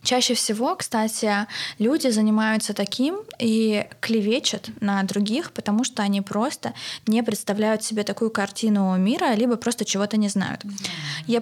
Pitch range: 195-235 Hz